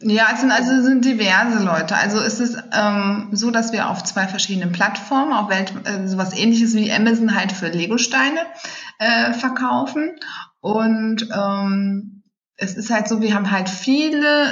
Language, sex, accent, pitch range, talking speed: German, female, German, 195-240 Hz, 170 wpm